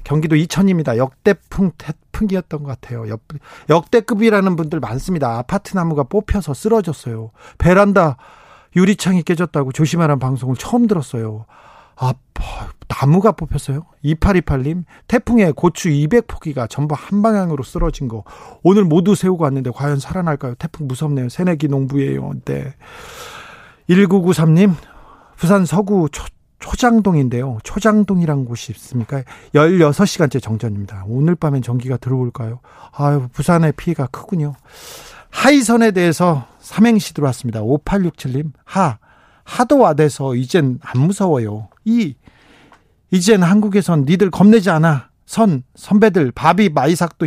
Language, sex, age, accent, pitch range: Korean, male, 40-59, native, 130-190 Hz